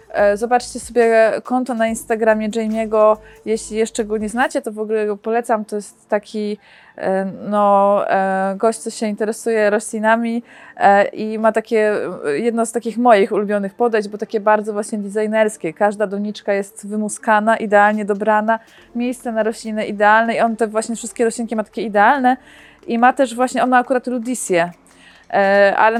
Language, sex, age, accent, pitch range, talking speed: Polish, female, 20-39, native, 210-240 Hz, 155 wpm